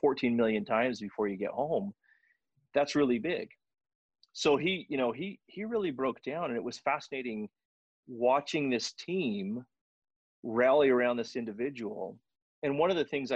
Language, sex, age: English, male, 30-49